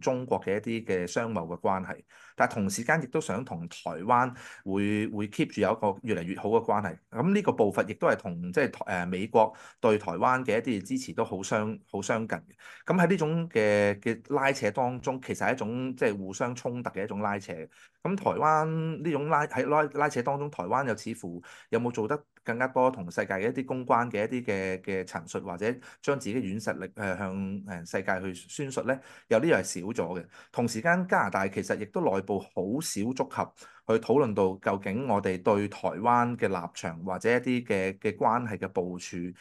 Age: 30-49